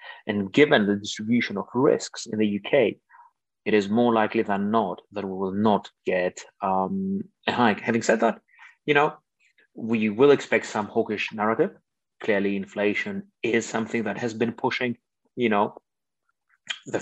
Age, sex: 30-49, male